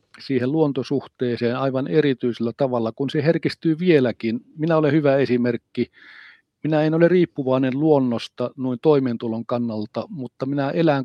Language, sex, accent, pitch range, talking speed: Finnish, male, native, 120-145 Hz, 130 wpm